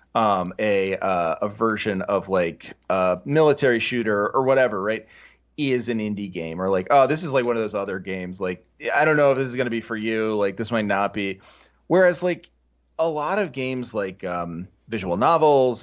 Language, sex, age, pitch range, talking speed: English, male, 30-49, 100-130 Hz, 205 wpm